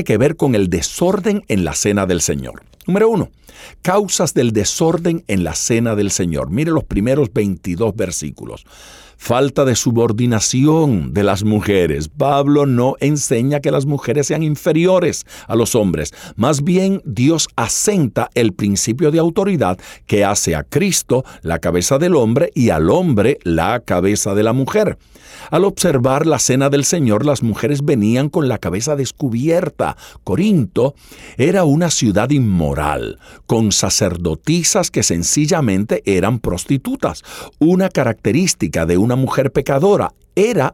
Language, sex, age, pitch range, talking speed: Spanish, male, 50-69, 100-155 Hz, 145 wpm